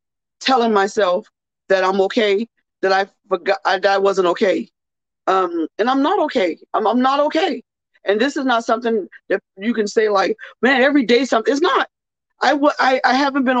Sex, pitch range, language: female, 200-270 Hz, English